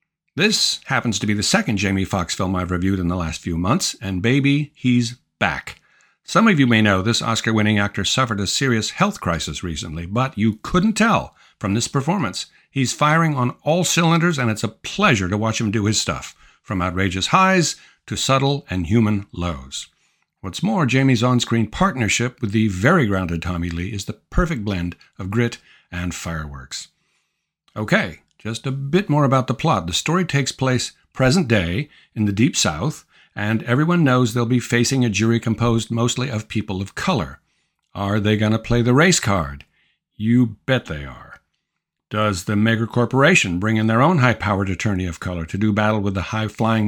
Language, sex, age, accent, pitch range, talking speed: English, male, 50-69, American, 100-130 Hz, 185 wpm